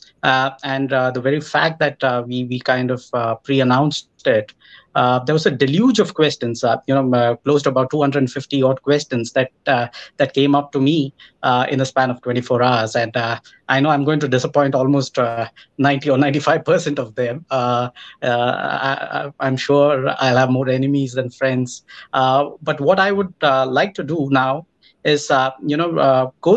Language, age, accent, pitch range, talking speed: English, 20-39, Indian, 125-145 Hz, 210 wpm